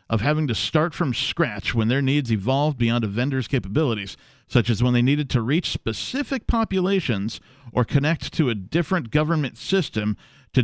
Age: 50-69